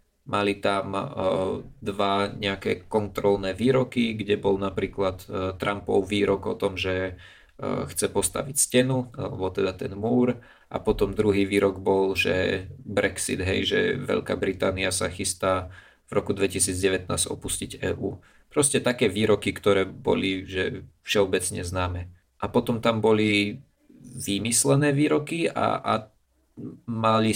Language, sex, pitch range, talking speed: Slovak, male, 95-120 Hz, 125 wpm